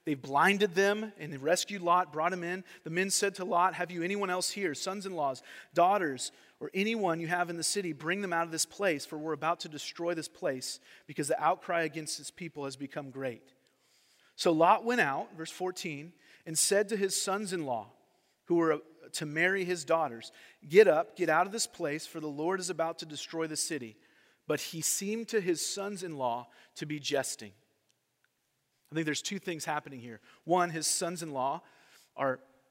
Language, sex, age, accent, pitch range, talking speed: English, male, 40-59, American, 150-185 Hz, 190 wpm